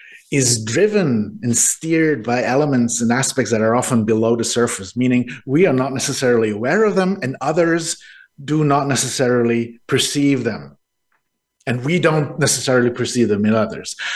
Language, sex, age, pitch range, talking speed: English, male, 50-69, 115-160 Hz, 155 wpm